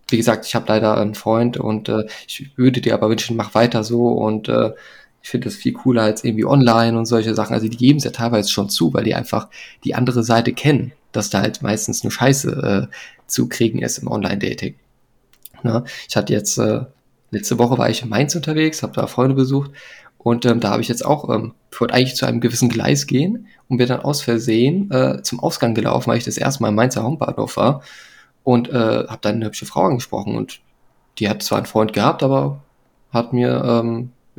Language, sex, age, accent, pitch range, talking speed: German, male, 20-39, German, 110-130 Hz, 220 wpm